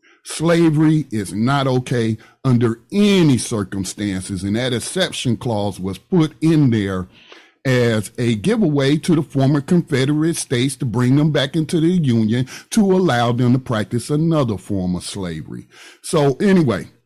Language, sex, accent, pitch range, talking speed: English, male, American, 110-150 Hz, 145 wpm